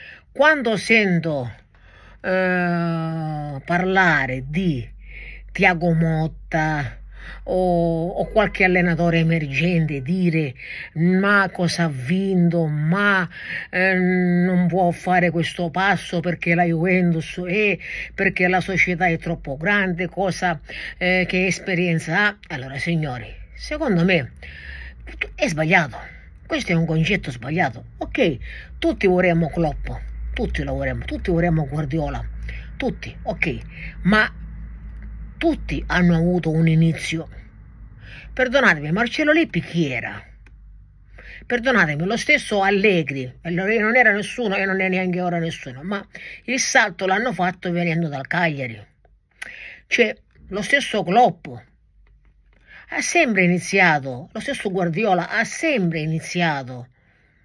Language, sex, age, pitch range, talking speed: Italian, female, 50-69, 150-190 Hz, 115 wpm